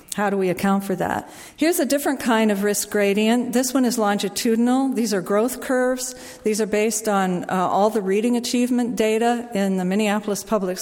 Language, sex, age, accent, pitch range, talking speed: English, female, 50-69, American, 190-230 Hz, 195 wpm